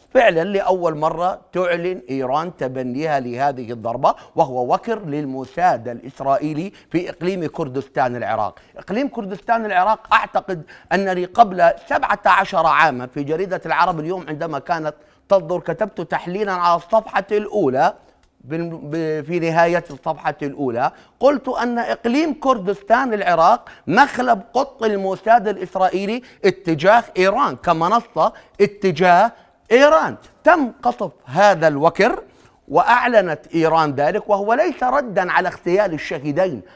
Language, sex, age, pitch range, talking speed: Arabic, male, 30-49, 160-215 Hz, 110 wpm